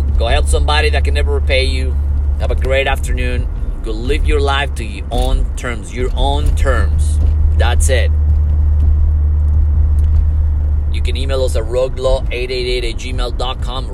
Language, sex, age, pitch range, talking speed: English, male, 30-49, 70-75 Hz, 140 wpm